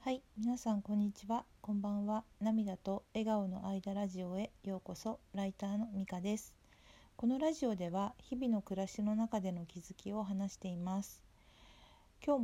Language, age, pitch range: Japanese, 50-69, 185-220 Hz